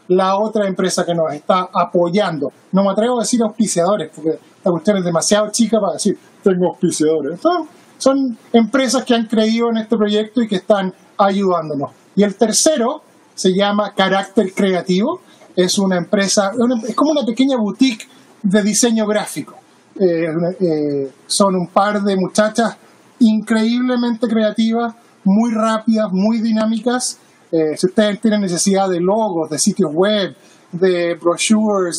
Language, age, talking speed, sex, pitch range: Spanish, 30-49, 145 wpm, male, 190-225 Hz